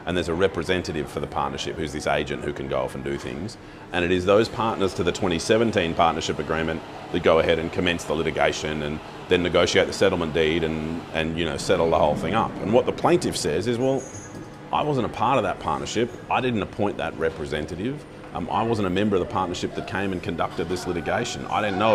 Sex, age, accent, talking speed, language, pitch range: male, 30-49, Australian, 230 wpm, English, 75-95 Hz